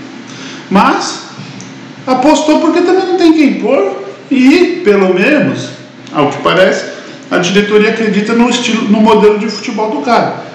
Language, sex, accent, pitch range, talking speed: Portuguese, male, Brazilian, 145-225 Hz, 140 wpm